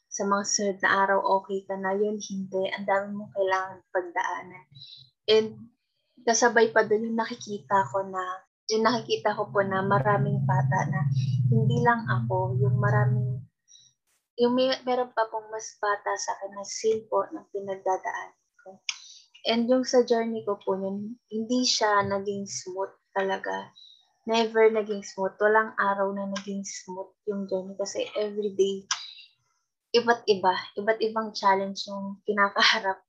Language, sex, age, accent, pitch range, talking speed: Filipino, female, 20-39, native, 190-220 Hz, 140 wpm